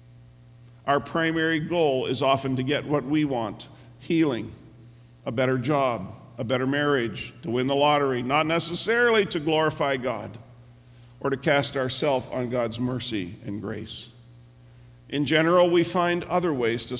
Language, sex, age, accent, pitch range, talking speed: English, male, 50-69, American, 120-155 Hz, 150 wpm